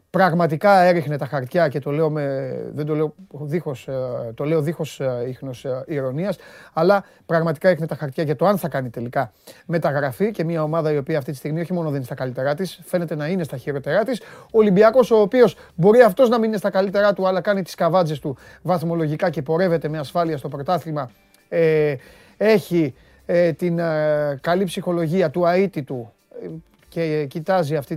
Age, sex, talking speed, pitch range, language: 30-49, male, 180 wpm, 145-175 Hz, Greek